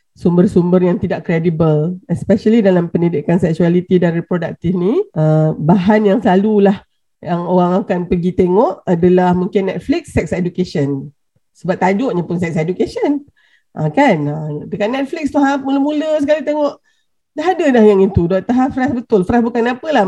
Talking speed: 155 wpm